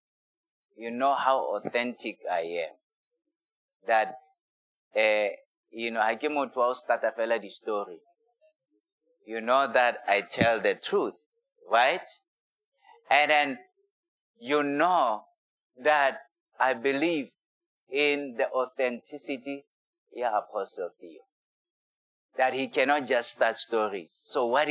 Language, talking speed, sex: English, 115 wpm, male